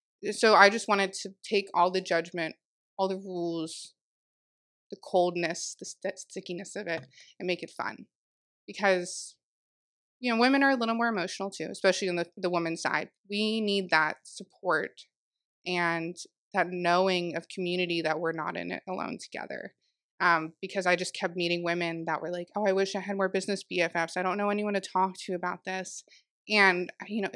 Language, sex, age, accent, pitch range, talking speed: English, female, 20-39, American, 175-200 Hz, 185 wpm